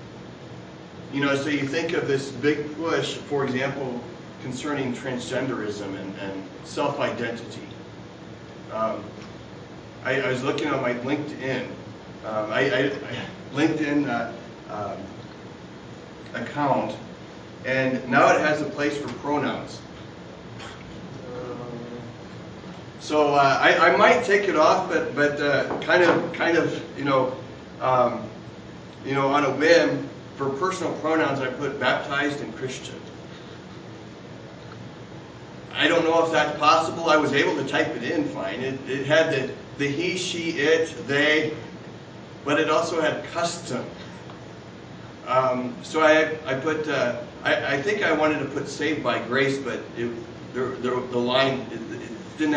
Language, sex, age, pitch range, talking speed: English, male, 30-49, 120-155 Hz, 135 wpm